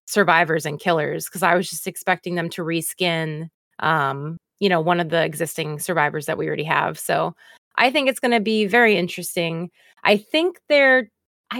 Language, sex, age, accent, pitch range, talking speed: English, female, 20-39, American, 175-220 Hz, 180 wpm